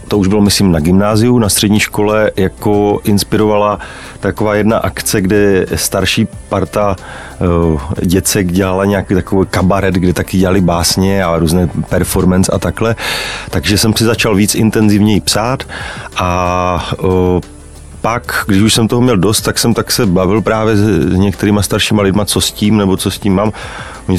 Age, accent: 30-49, native